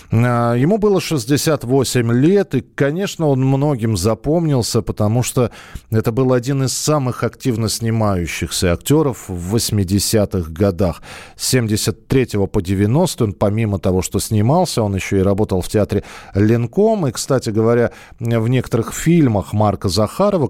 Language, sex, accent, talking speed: Russian, male, native, 135 wpm